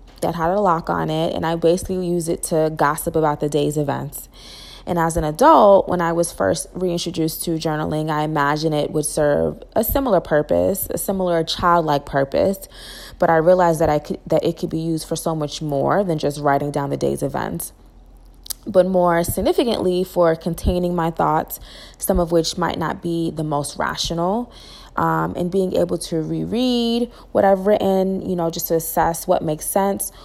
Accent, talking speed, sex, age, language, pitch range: American, 190 wpm, female, 20-39, English, 155-180 Hz